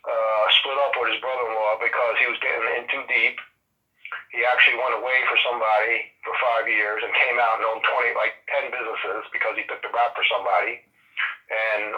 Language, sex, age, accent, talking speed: English, male, 40-59, American, 195 wpm